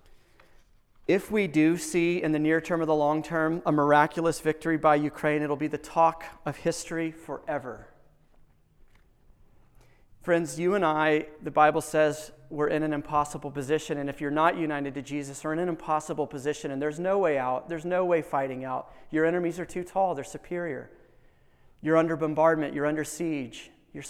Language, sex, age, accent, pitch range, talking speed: English, male, 30-49, American, 140-175 Hz, 180 wpm